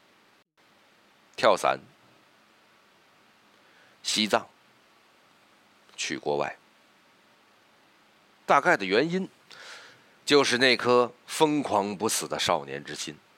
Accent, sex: native, male